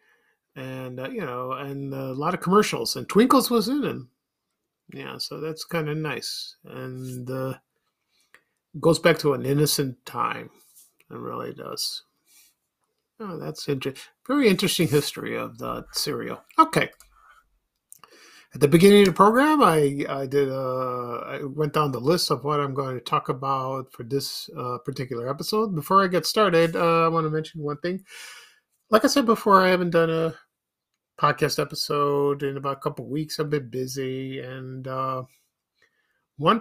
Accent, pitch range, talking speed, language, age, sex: American, 135-175 Hz, 165 wpm, English, 50-69, male